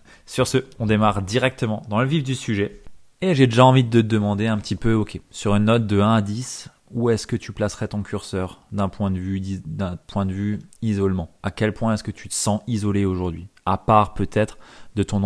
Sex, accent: male, French